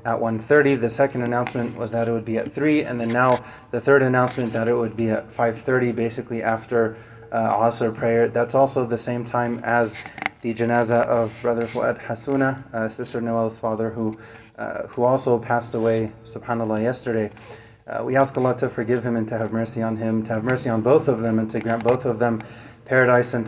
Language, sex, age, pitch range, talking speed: English, male, 30-49, 115-130 Hz, 205 wpm